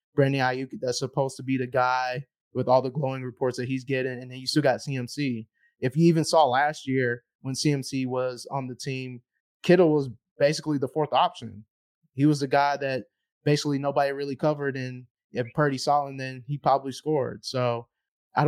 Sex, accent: male, American